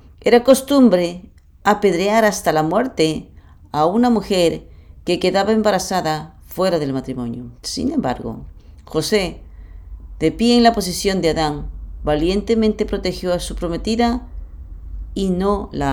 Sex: female